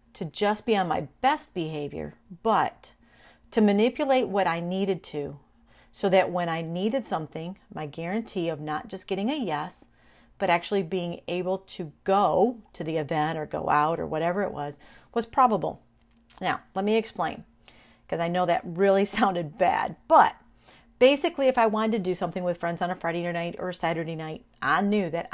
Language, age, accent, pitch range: English, 40-59, American, 165-215 Hz